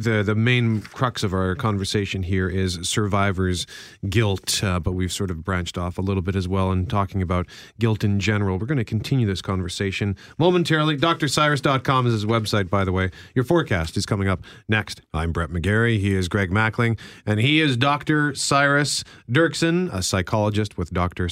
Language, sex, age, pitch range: English, male, 40-59, 95-115 Hz